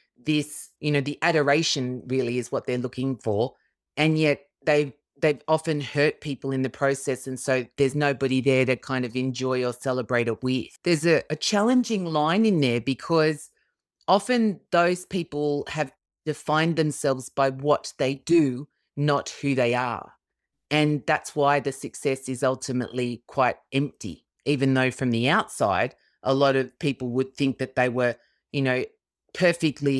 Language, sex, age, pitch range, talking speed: English, female, 30-49, 130-150 Hz, 165 wpm